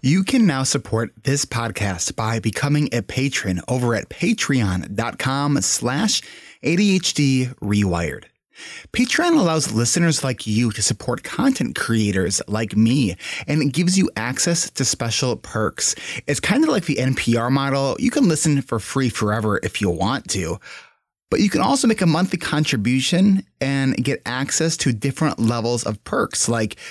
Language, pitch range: English, 110-150 Hz